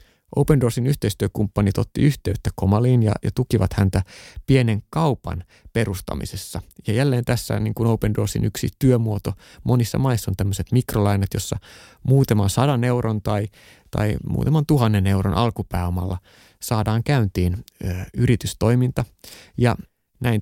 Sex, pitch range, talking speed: male, 100-125 Hz, 125 wpm